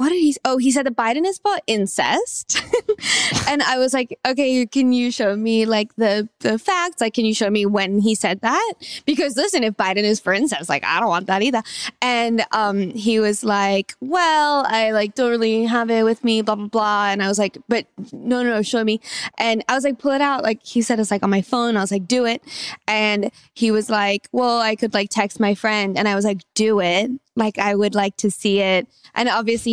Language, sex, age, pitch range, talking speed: English, female, 20-39, 200-250 Hz, 245 wpm